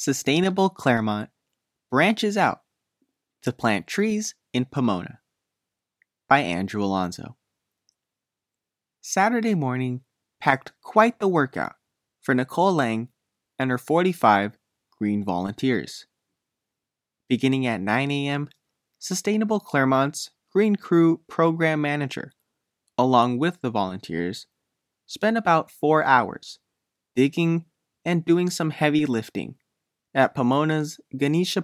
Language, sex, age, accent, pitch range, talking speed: English, male, 20-39, American, 110-165 Hz, 100 wpm